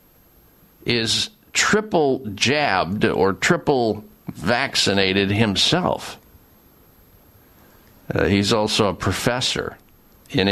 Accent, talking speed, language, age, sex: American, 75 wpm, English, 50-69, male